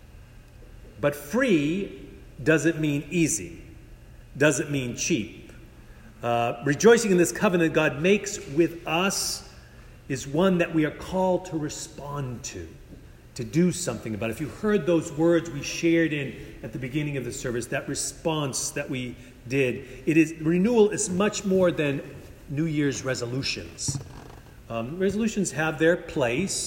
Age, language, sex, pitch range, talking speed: 40-59, English, male, 130-170 Hz, 145 wpm